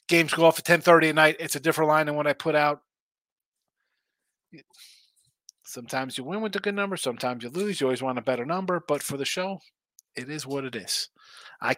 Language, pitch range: English, 125-165 Hz